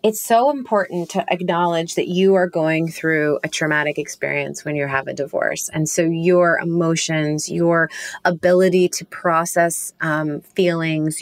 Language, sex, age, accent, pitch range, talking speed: English, female, 30-49, American, 160-200 Hz, 150 wpm